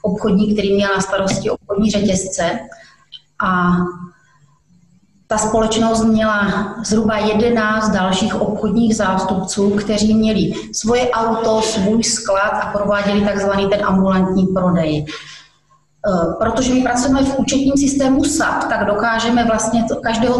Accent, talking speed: native, 120 wpm